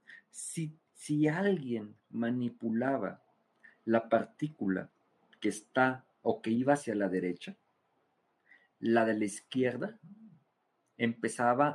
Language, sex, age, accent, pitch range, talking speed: Spanish, male, 50-69, Mexican, 105-130 Hz, 95 wpm